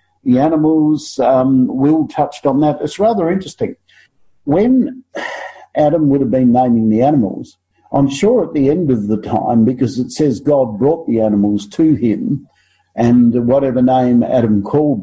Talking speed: 160 wpm